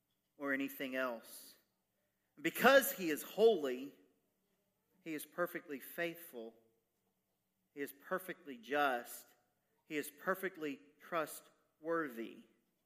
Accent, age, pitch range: American, 40-59, 150-185 Hz